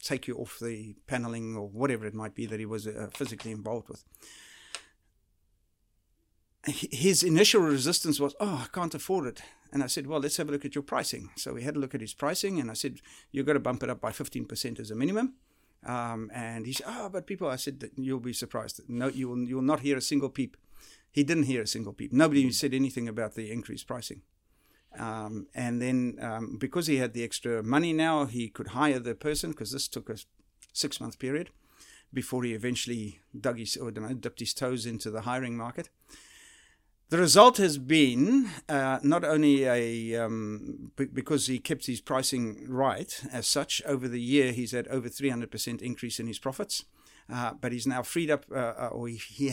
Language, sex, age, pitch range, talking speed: English, male, 50-69, 115-145 Hz, 200 wpm